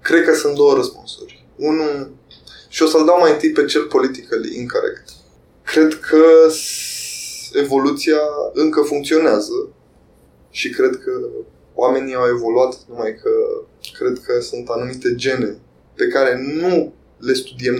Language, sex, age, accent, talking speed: English, male, 20-39, Romanian, 130 wpm